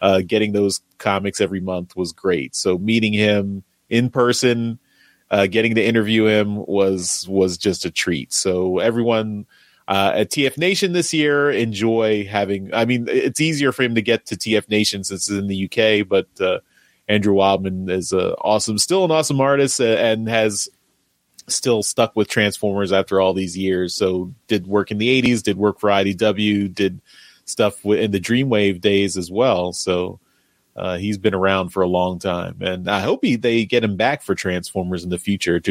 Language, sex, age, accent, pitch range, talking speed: English, male, 30-49, American, 95-120 Hz, 185 wpm